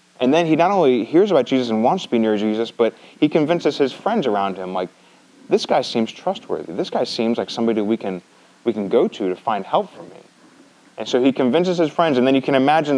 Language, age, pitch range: English, 30-49, 115-145 Hz